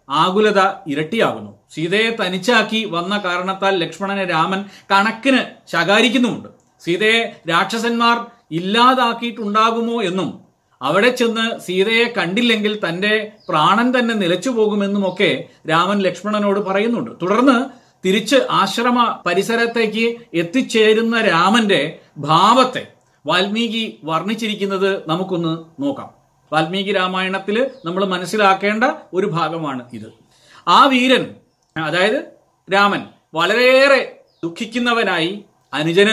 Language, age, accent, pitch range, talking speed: Malayalam, 40-59, native, 180-230 Hz, 85 wpm